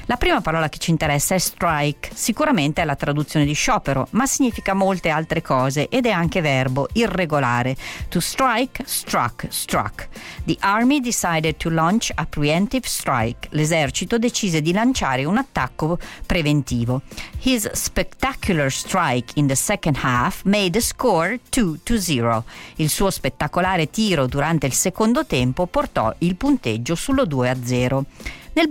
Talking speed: 140 wpm